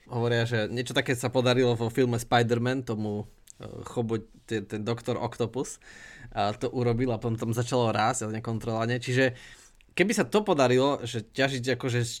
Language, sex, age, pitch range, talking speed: Slovak, male, 20-39, 115-130 Hz, 165 wpm